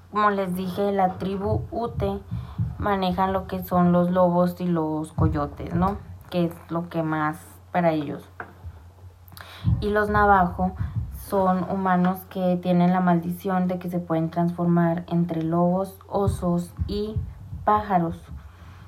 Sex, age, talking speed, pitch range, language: female, 20-39, 135 wpm, 120-195 Hz, Spanish